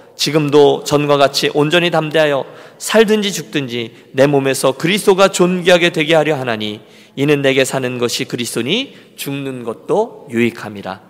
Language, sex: Korean, male